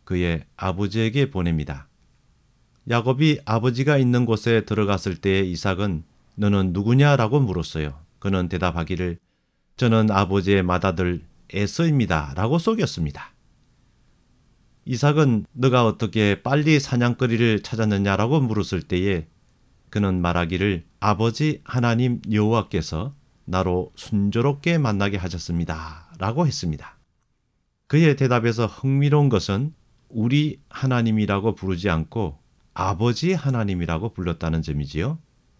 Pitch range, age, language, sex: 90-125 Hz, 40-59, Korean, male